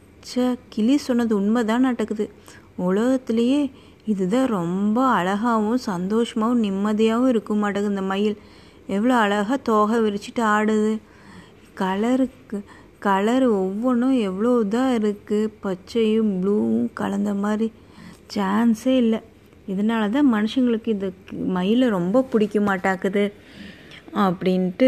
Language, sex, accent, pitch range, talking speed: Tamil, female, native, 195-230 Hz, 95 wpm